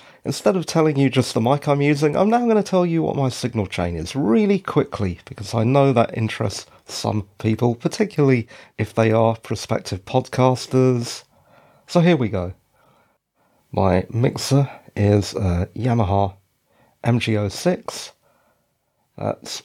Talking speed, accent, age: 140 wpm, British, 40-59